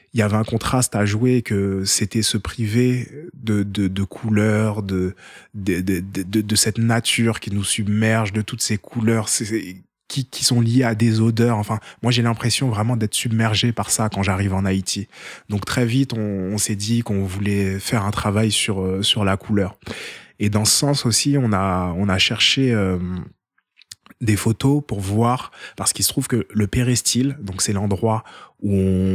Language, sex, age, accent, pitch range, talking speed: French, male, 20-39, French, 100-115 Hz, 190 wpm